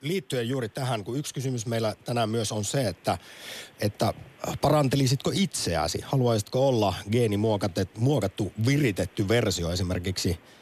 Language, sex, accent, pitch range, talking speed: Finnish, male, native, 95-125 Hz, 120 wpm